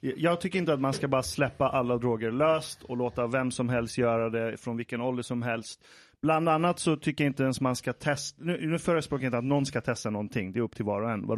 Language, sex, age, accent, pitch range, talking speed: Swedish, male, 30-49, native, 120-150 Hz, 270 wpm